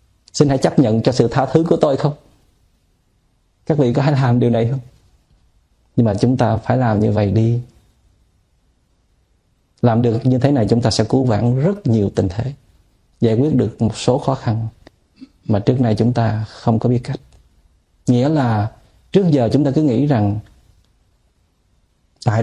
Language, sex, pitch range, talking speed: Vietnamese, male, 100-140 Hz, 180 wpm